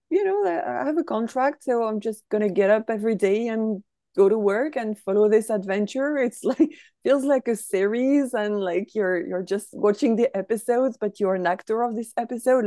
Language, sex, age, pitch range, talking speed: English, female, 30-49, 185-240 Hz, 205 wpm